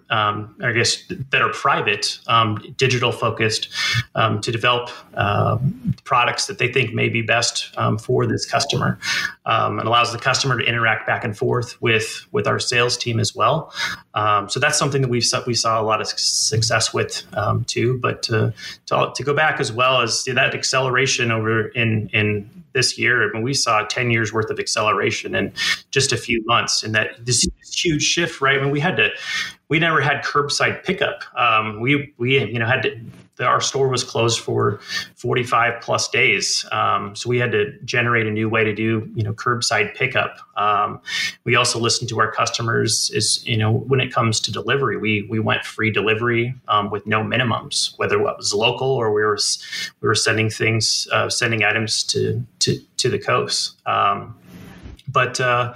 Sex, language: male, English